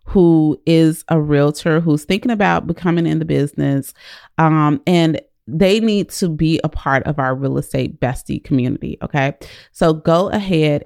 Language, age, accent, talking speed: English, 30-49, American, 160 wpm